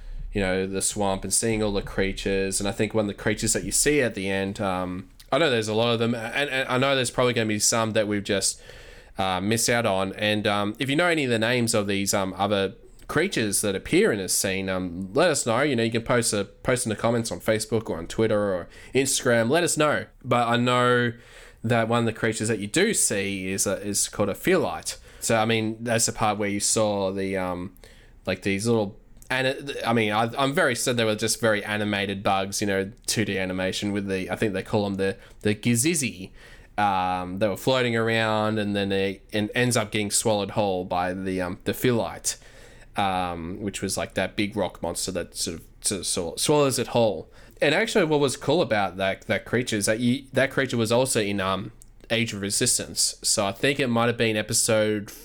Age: 20-39